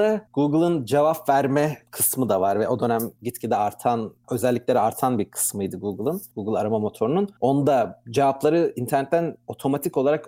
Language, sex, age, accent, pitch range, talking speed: Turkish, male, 40-59, native, 115-145 Hz, 140 wpm